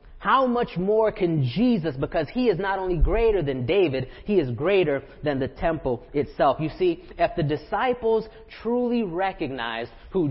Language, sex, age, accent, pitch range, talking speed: English, male, 30-49, American, 135-225 Hz, 165 wpm